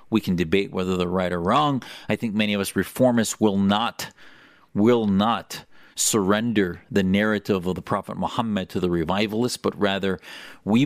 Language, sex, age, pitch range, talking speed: English, male, 40-59, 95-125 Hz, 170 wpm